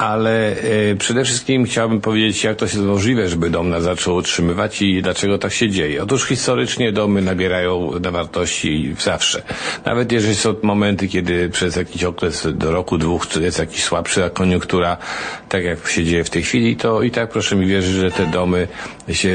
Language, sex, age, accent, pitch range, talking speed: Polish, male, 50-69, native, 90-105 Hz, 185 wpm